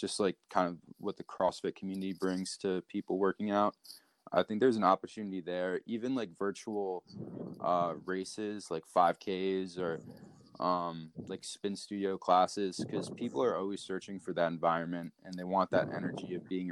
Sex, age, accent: male, 20-39, American